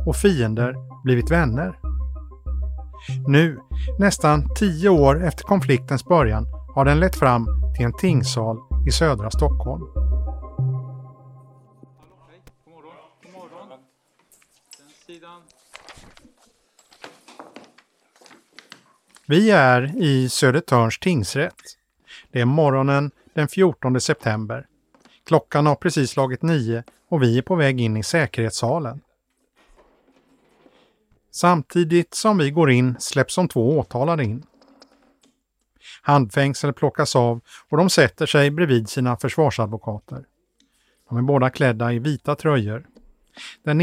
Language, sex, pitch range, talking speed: English, male, 120-155 Hz, 105 wpm